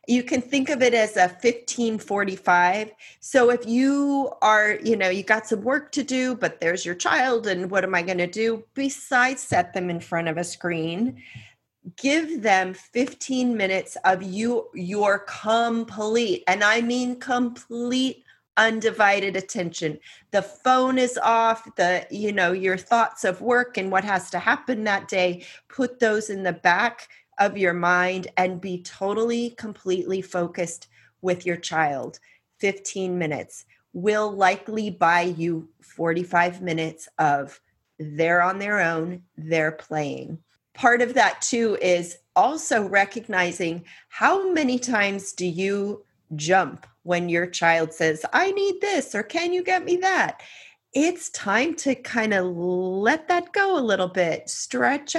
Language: English